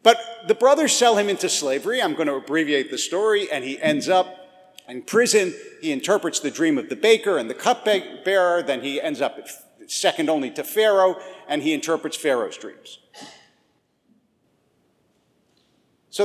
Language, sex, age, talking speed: English, male, 50-69, 165 wpm